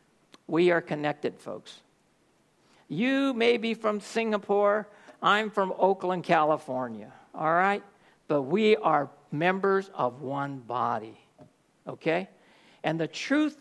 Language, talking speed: English, 115 wpm